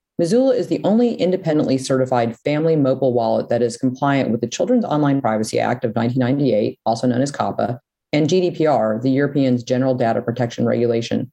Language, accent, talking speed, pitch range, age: English, American, 170 wpm, 125-150 Hz, 30-49